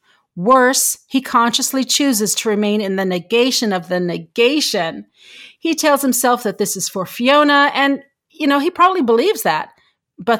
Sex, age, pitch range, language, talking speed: female, 40-59, 195-275 Hz, English, 160 wpm